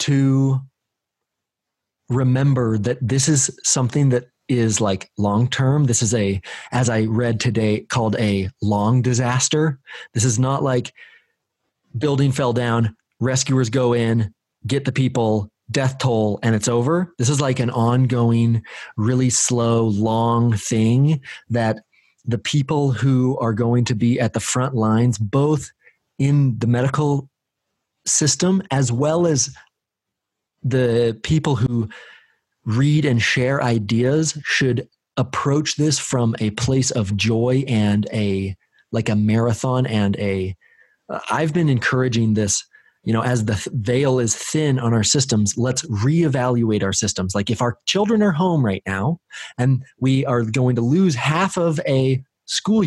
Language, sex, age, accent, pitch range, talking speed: English, male, 30-49, American, 115-140 Hz, 145 wpm